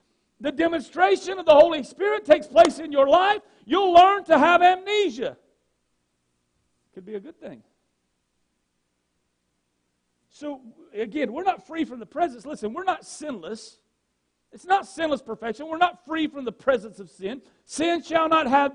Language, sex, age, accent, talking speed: English, male, 50-69, American, 155 wpm